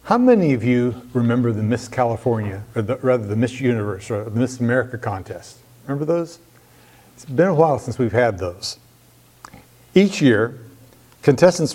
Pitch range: 115-135 Hz